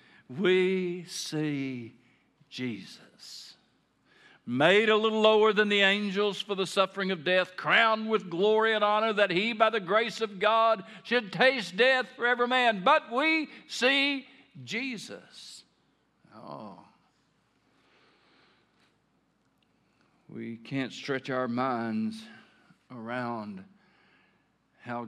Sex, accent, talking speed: male, American, 110 wpm